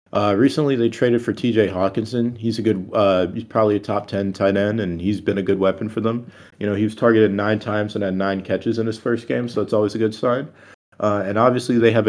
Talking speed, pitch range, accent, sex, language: 260 wpm, 95-120 Hz, American, male, English